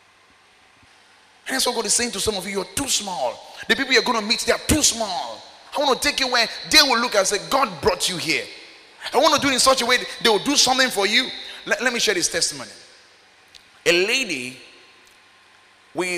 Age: 30-49